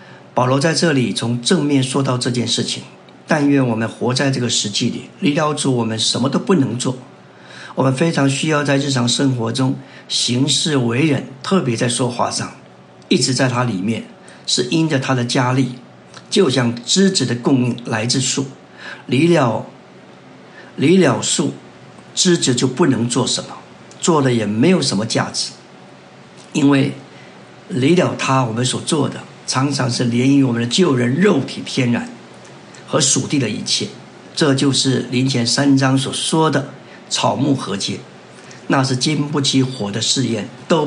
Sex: male